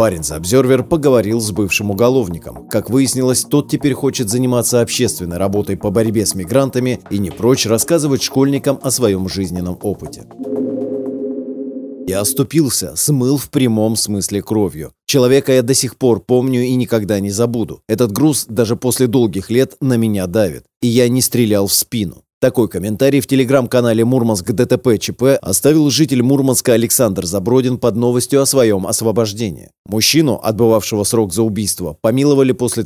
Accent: native